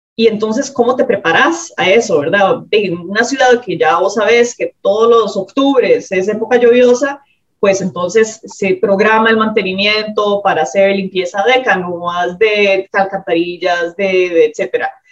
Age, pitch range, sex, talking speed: 30-49, 195-255 Hz, female, 150 wpm